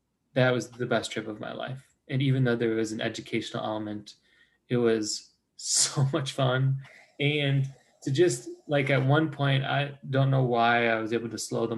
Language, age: English, 20-39